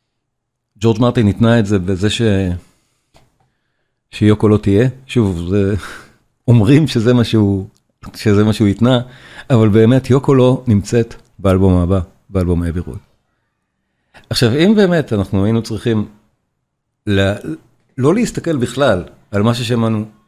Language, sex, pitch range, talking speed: Hebrew, male, 100-125 Hz, 125 wpm